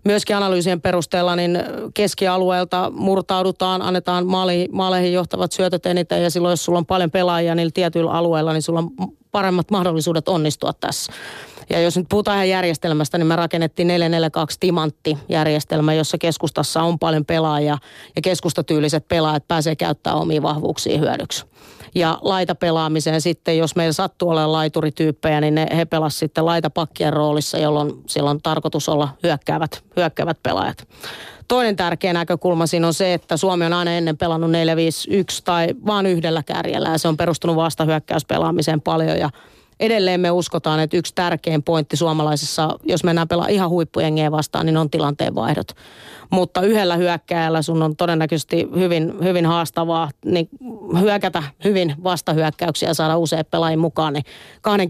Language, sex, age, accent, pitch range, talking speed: Finnish, female, 30-49, native, 160-180 Hz, 150 wpm